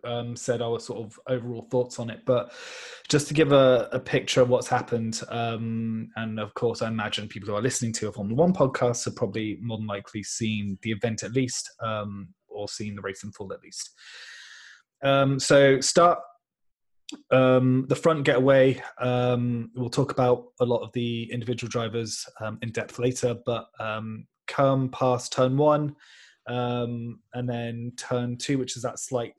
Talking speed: 180 wpm